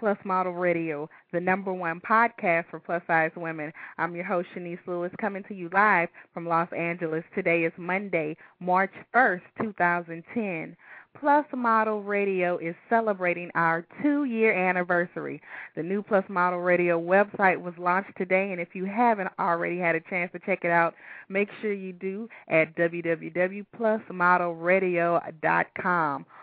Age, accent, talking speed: 20-39, American, 150 wpm